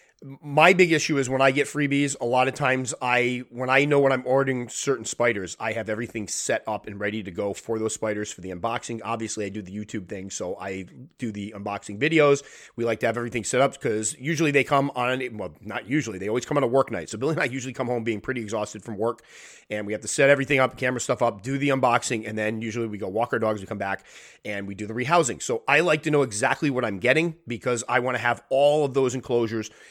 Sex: male